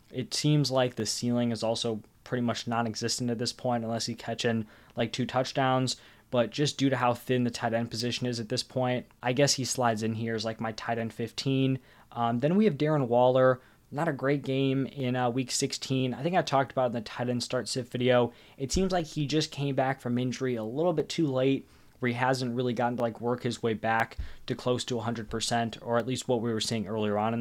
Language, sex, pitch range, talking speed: English, male, 120-135 Hz, 245 wpm